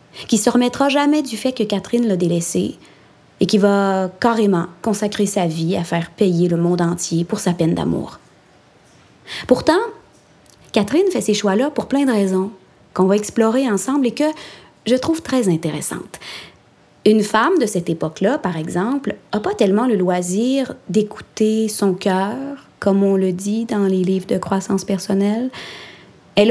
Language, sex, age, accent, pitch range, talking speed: French, female, 30-49, Canadian, 180-230 Hz, 165 wpm